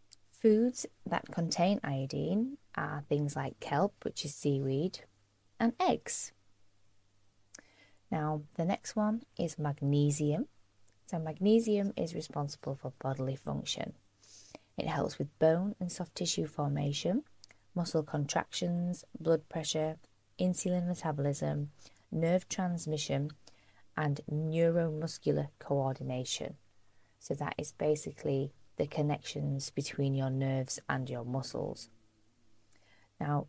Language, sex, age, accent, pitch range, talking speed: English, female, 20-39, British, 130-165 Hz, 105 wpm